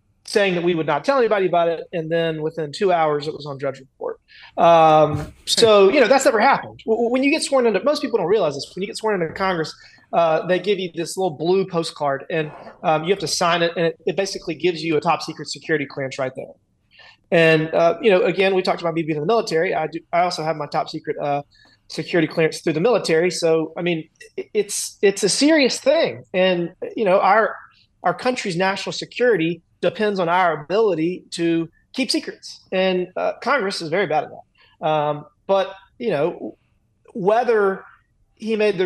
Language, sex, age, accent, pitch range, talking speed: English, male, 30-49, American, 155-195 Hz, 210 wpm